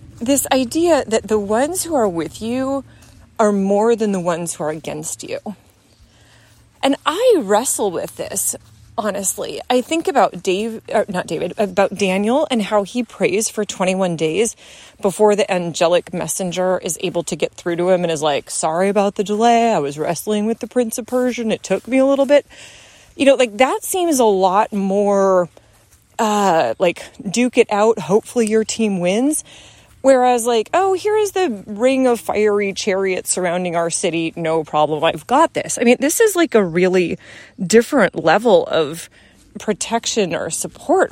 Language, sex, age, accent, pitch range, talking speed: English, female, 30-49, American, 185-265 Hz, 175 wpm